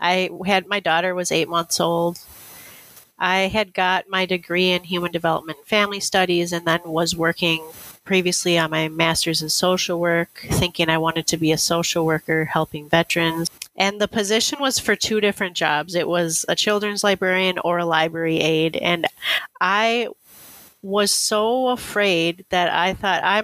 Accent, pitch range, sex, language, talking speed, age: American, 160-185 Hz, female, English, 165 wpm, 30-49